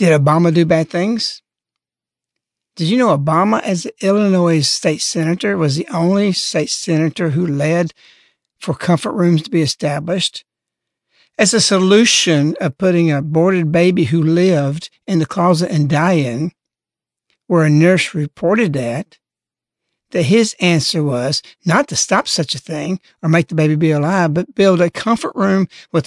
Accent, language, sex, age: American, English, male, 60-79